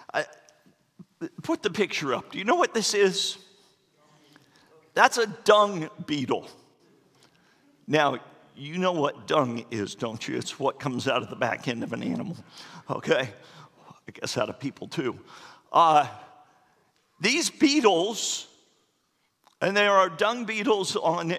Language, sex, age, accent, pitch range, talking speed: English, male, 50-69, American, 165-240 Hz, 135 wpm